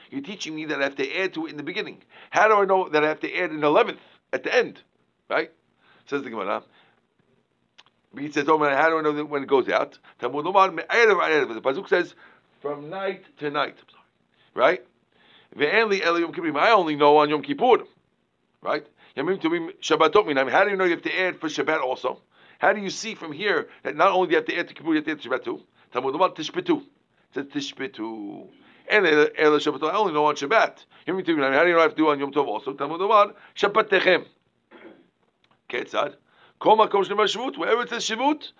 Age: 50-69